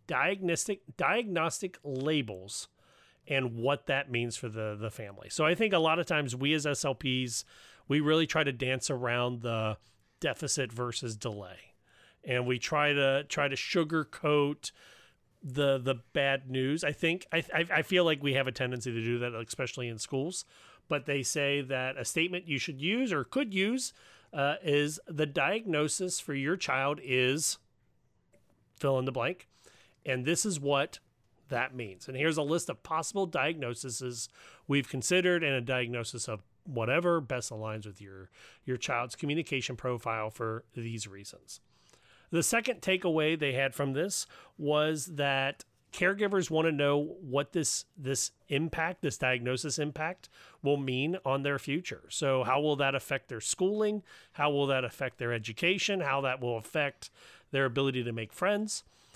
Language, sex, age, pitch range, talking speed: English, male, 30-49, 125-160 Hz, 165 wpm